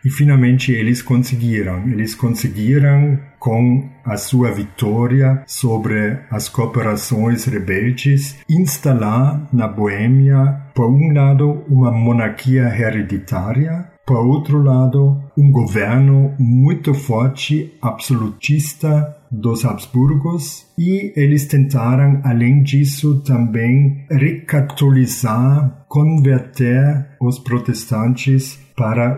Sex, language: male, Portuguese